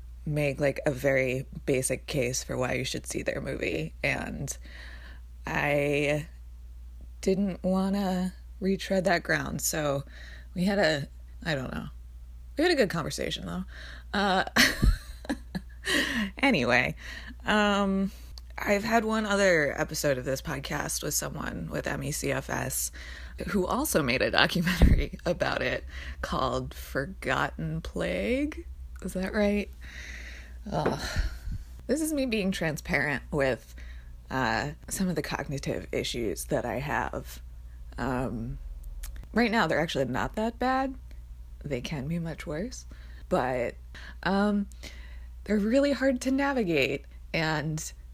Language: English